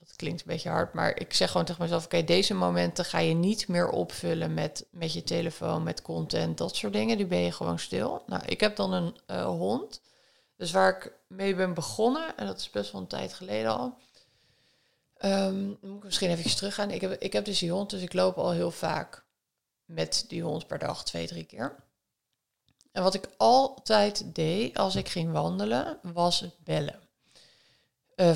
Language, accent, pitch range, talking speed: Dutch, Dutch, 115-190 Hz, 205 wpm